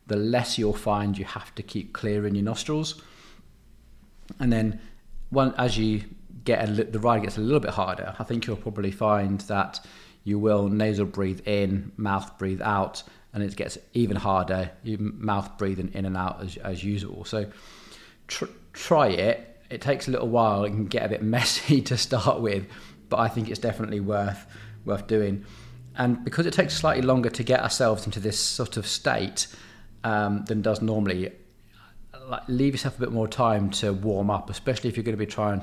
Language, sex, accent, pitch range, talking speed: English, male, British, 100-115 Hz, 190 wpm